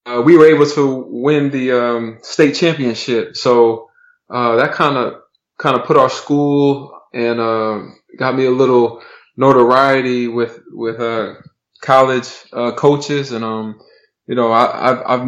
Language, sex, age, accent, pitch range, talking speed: English, male, 20-39, American, 115-135 Hz, 155 wpm